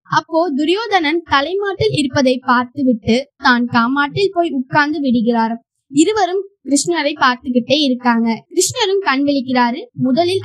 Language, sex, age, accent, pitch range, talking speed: Tamil, female, 20-39, native, 240-320 Hz, 110 wpm